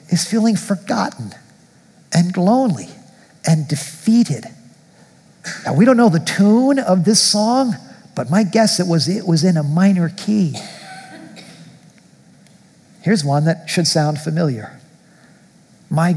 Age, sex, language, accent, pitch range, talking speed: 50-69, male, English, American, 155-205 Hz, 125 wpm